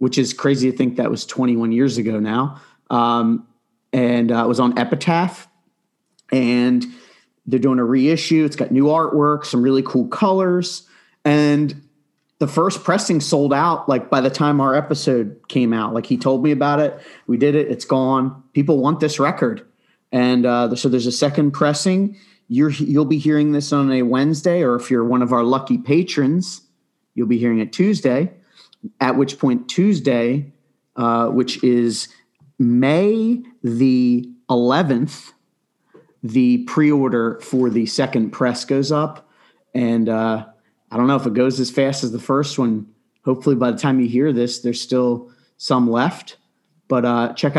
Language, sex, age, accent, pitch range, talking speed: English, male, 40-59, American, 125-150 Hz, 170 wpm